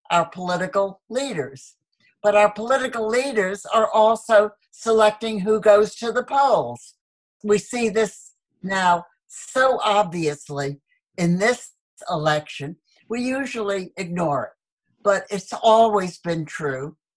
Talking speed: 115 wpm